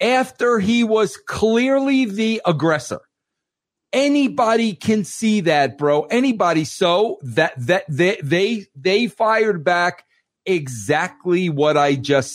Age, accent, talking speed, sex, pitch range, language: 50-69, American, 115 wpm, male, 170-230 Hz, English